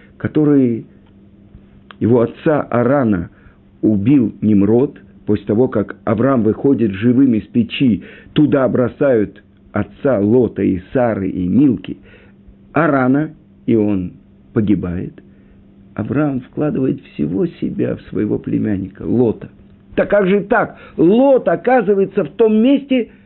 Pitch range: 100-155 Hz